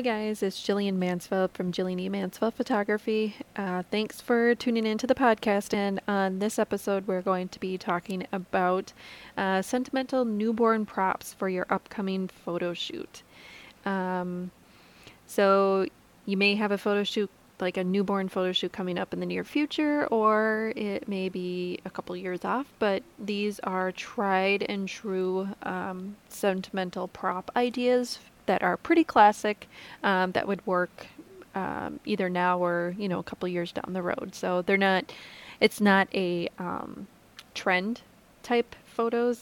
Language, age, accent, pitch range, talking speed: English, 20-39, American, 185-215 Hz, 160 wpm